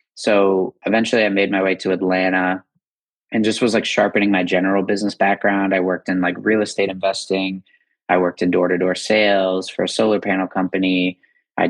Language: English